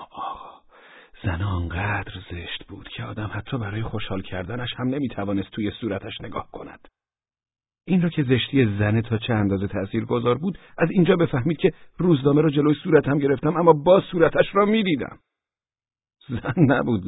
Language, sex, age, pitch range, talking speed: Persian, male, 50-69, 90-130 Hz, 150 wpm